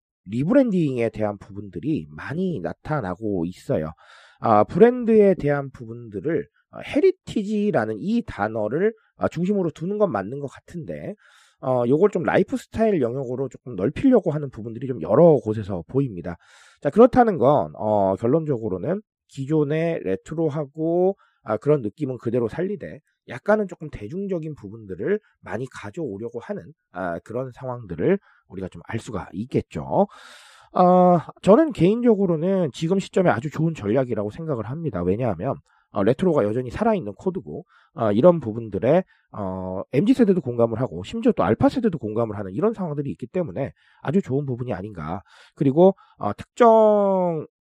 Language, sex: Korean, male